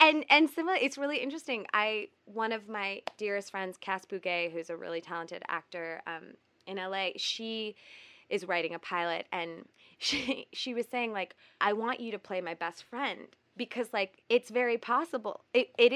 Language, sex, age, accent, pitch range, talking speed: English, female, 20-39, American, 180-235 Hz, 180 wpm